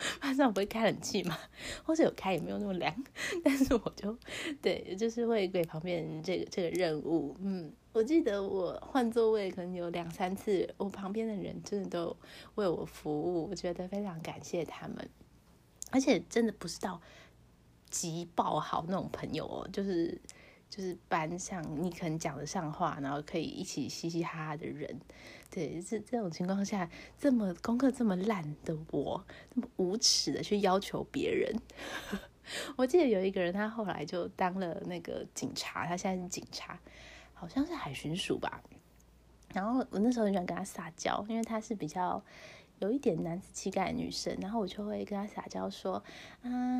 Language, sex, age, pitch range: Japanese, female, 20-39, 170-225 Hz